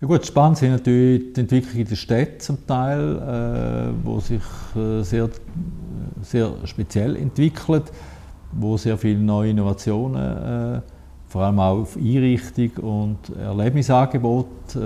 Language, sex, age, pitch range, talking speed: German, male, 50-69, 100-125 Hz, 135 wpm